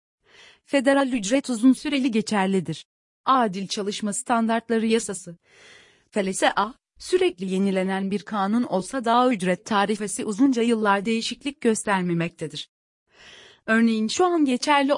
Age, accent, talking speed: 40-59, native, 110 wpm